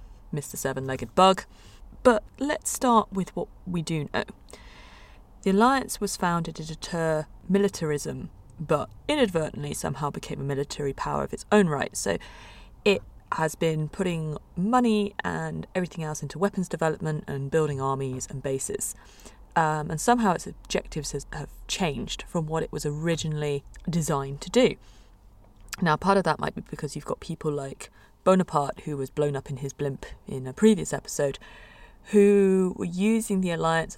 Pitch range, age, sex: 145-195 Hz, 30-49, female